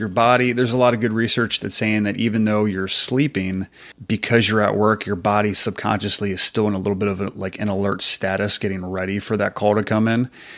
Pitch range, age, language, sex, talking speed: 100-110 Hz, 30-49, English, male, 240 wpm